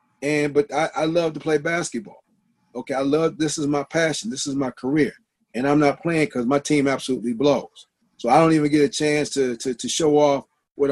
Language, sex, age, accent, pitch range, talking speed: English, male, 40-59, American, 145-180 Hz, 230 wpm